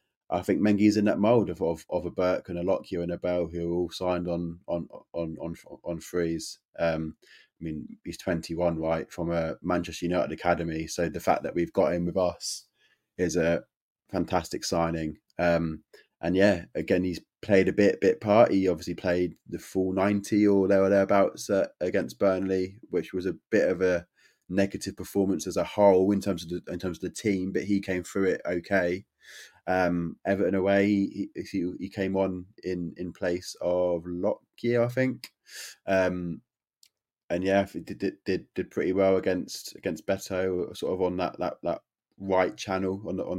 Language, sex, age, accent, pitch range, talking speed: English, male, 20-39, British, 85-95 Hz, 190 wpm